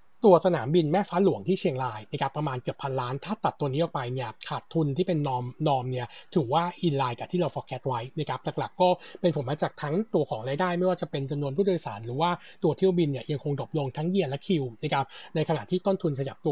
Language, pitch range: Thai, 140-175 Hz